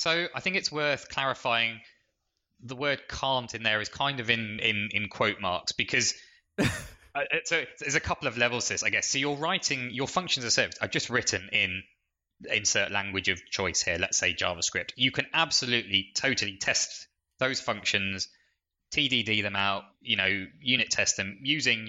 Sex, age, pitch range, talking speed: male, 20-39, 95-120 Hz, 180 wpm